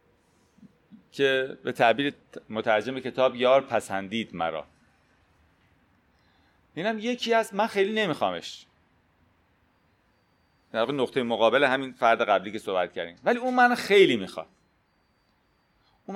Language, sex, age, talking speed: Persian, male, 40-59, 110 wpm